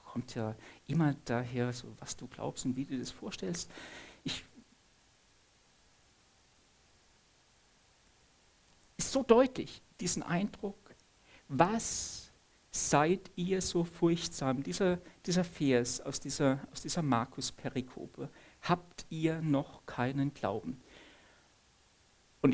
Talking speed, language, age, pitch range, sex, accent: 105 wpm, German, 60-79, 130-180 Hz, male, German